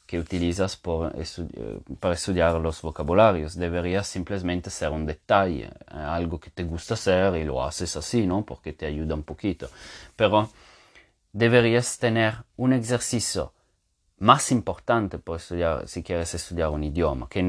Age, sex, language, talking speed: 30-49, male, English, 145 wpm